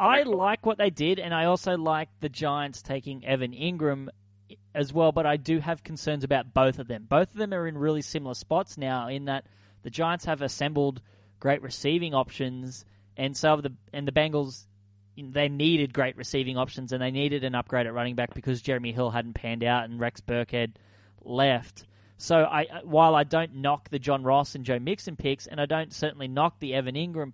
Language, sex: English, male